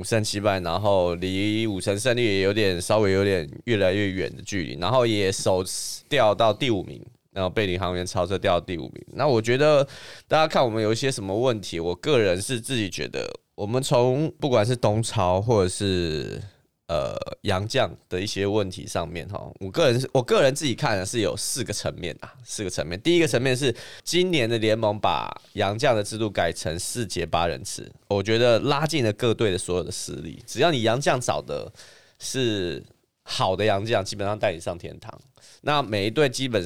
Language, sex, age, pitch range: Chinese, male, 20-39, 95-120 Hz